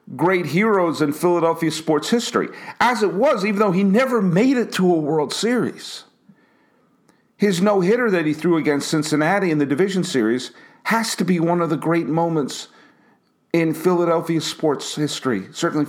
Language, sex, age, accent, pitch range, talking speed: English, male, 50-69, American, 155-210 Hz, 165 wpm